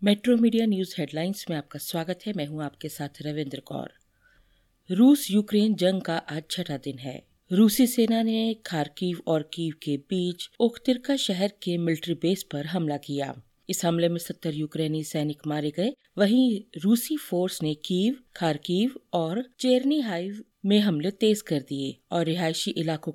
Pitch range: 160-220 Hz